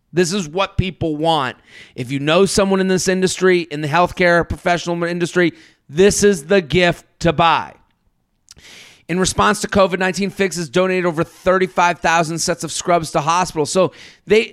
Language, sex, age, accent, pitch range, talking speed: English, male, 30-49, American, 155-195 Hz, 160 wpm